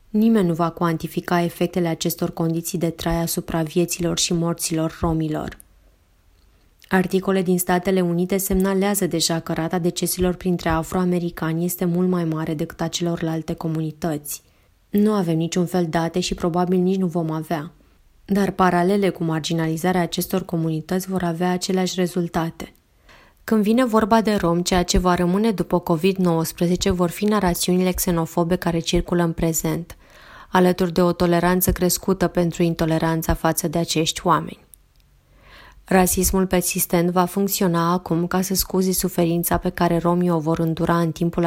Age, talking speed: 20-39, 145 wpm